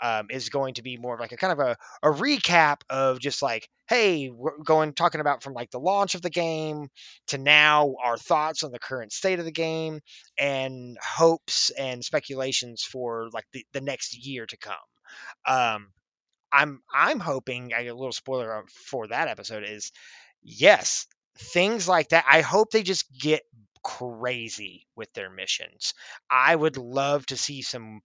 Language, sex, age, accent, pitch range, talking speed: English, male, 20-39, American, 125-165 Hz, 175 wpm